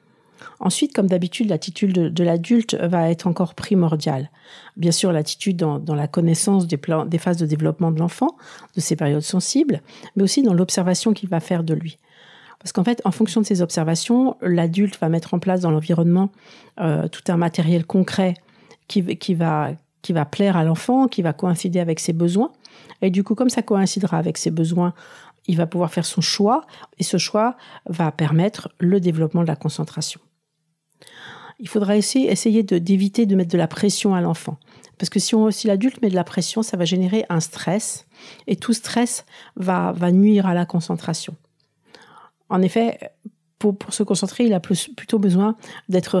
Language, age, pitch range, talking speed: French, 50-69, 165-205 Hz, 180 wpm